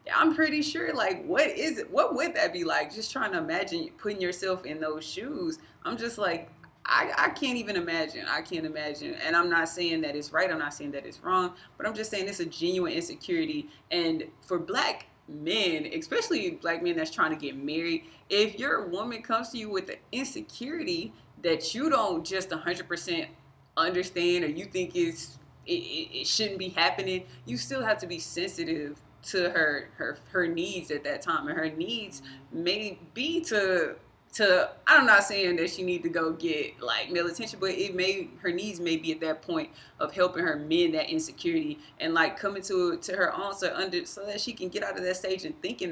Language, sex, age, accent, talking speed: English, female, 20-39, American, 205 wpm